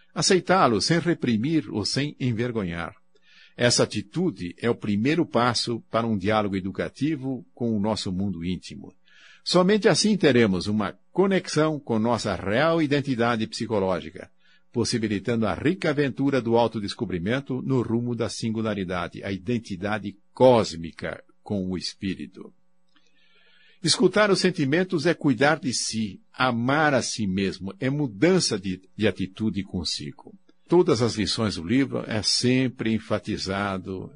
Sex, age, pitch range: male, 60-79, 100-150 Hz